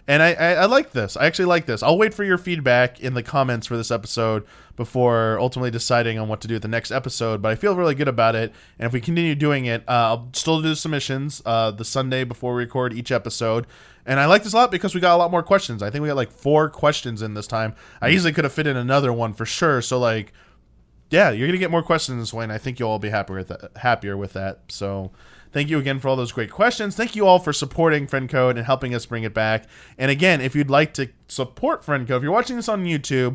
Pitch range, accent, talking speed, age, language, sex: 110-145 Hz, American, 270 wpm, 20-39, English, male